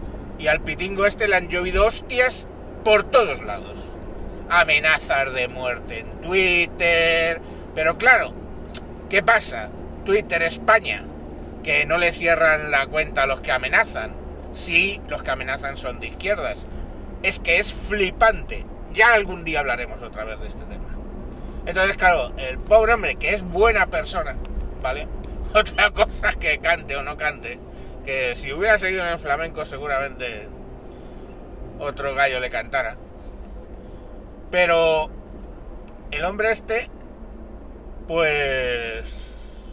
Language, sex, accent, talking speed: Spanish, male, Spanish, 130 wpm